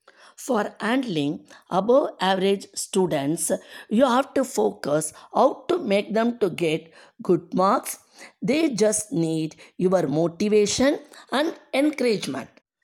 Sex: female